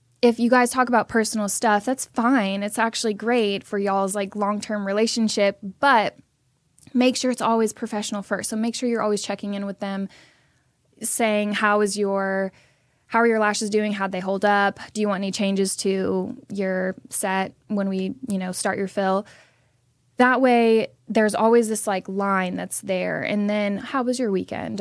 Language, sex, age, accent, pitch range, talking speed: English, female, 10-29, American, 195-225 Hz, 190 wpm